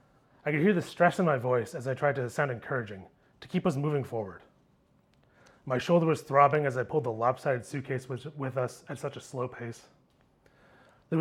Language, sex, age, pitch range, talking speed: English, male, 30-49, 125-155 Hz, 200 wpm